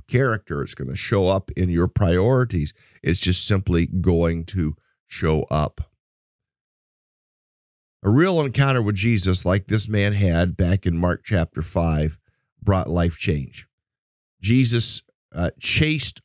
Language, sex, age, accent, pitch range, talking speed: English, male, 50-69, American, 85-110 Hz, 135 wpm